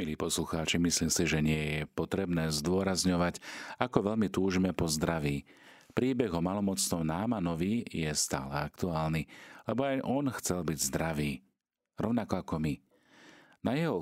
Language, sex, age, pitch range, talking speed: Slovak, male, 40-59, 80-95 Hz, 135 wpm